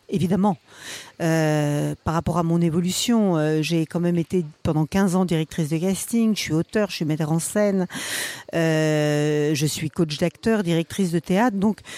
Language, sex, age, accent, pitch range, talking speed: French, female, 50-69, French, 165-205 Hz, 175 wpm